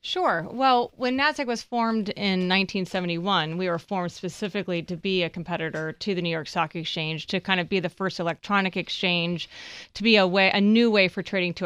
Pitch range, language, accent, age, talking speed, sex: 175-205 Hz, English, American, 30-49, 205 wpm, female